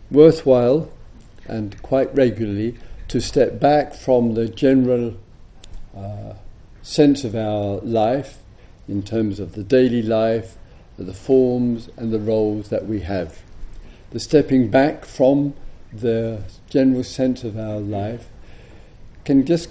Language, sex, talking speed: English, male, 125 wpm